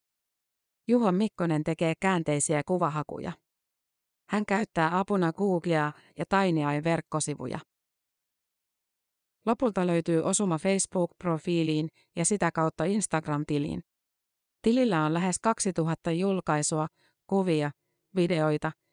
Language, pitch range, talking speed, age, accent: Finnish, 155-190 Hz, 85 wpm, 30-49, native